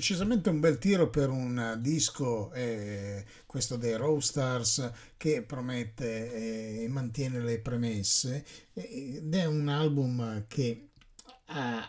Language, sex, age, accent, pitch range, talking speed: English, male, 50-69, Italian, 110-150 Hz, 130 wpm